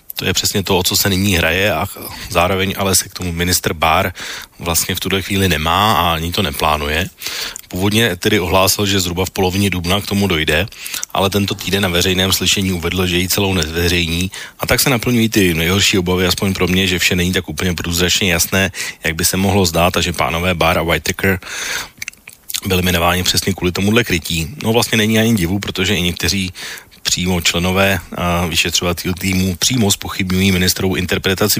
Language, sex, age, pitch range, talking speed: Slovak, male, 30-49, 90-100 Hz, 185 wpm